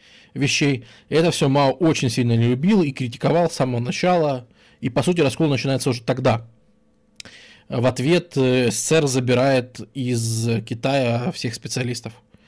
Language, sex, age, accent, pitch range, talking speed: Russian, male, 20-39, native, 120-165 Hz, 135 wpm